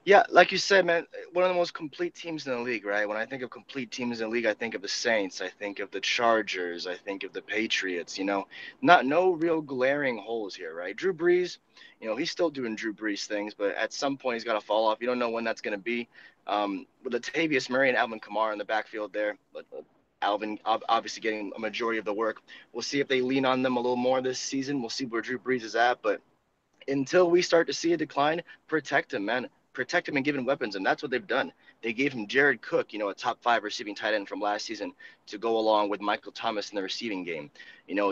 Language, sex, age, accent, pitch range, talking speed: English, male, 20-39, American, 110-150 Hz, 260 wpm